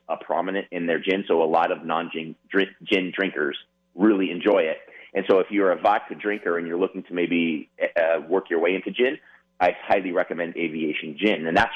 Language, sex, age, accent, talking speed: English, male, 30-49, American, 215 wpm